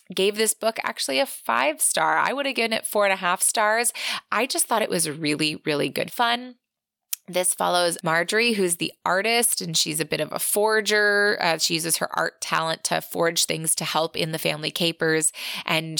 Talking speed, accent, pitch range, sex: 205 wpm, American, 160-225 Hz, female